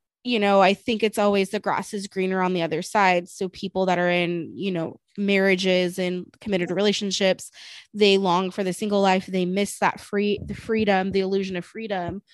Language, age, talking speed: English, 20-39, 200 wpm